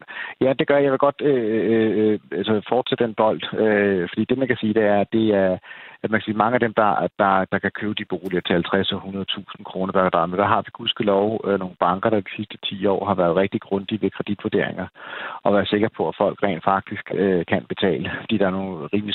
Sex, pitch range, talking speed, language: male, 95-110 Hz, 240 wpm, Danish